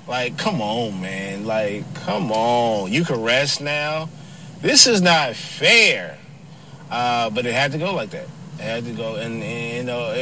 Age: 30-49